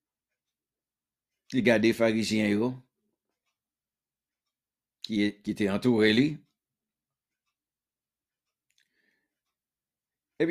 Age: 60-79